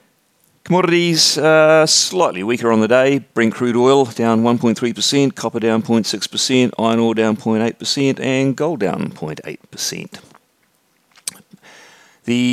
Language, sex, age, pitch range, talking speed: English, male, 40-59, 85-115 Hz, 135 wpm